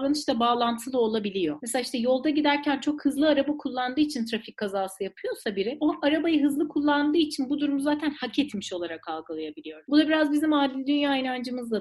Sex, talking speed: female, 185 wpm